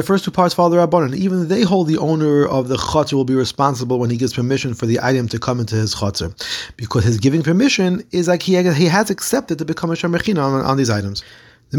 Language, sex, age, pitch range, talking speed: English, male, 30-49, 120-170 Hz, 245 wpm